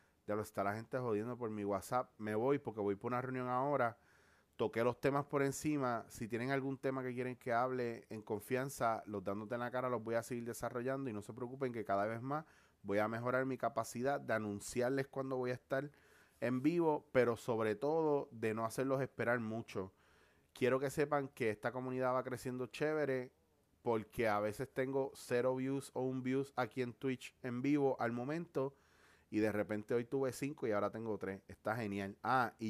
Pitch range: 105-135 Hz